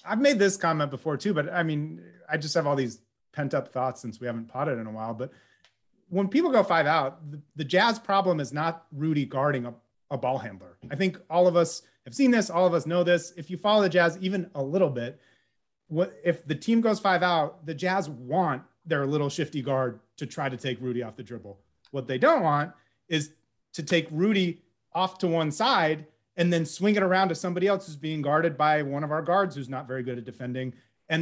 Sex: male